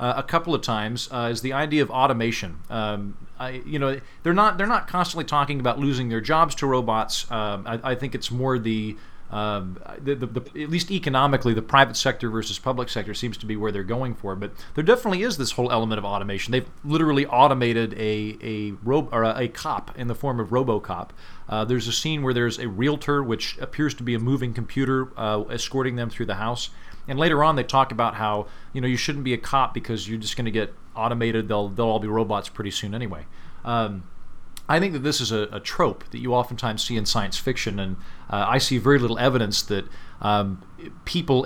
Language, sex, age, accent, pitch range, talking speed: English, male, 40-59, American, 105-135 Hz, 215 wpm